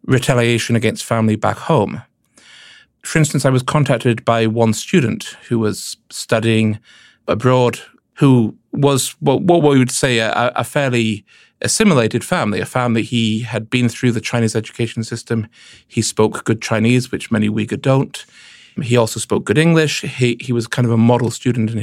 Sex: male